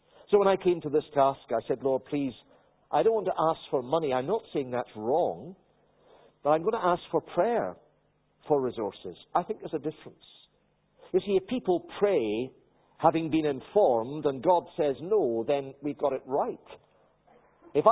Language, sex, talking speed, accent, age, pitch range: English, male, 185 wpm, British, 50-69, 125-175 Hz